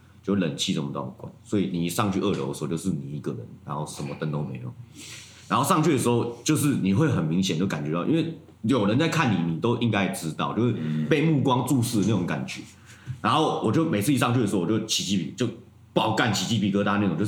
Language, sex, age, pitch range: Chinese, male, 30-49, 90-120 Hz